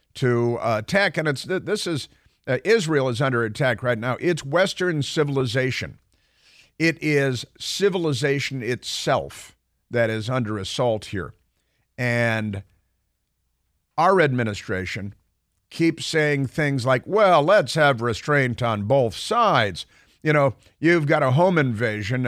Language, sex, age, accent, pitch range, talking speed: English, male, 50-69, American, 110-140 Hz, 125 wpm